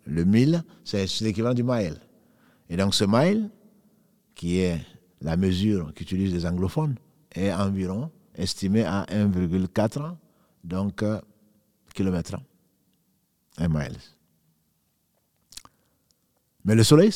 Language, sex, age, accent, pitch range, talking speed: French, male, 50-69, French, 90-120 Hz, 100 wpm